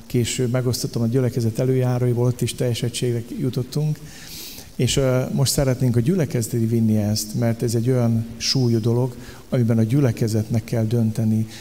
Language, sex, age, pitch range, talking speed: Hungarian, male, 50-69, 115-135 Hz, 140 wpm